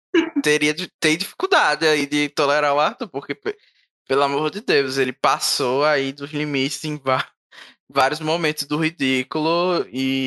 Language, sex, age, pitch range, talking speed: Portuguese, male, 10-29, 135-155 Hz, 135 wpm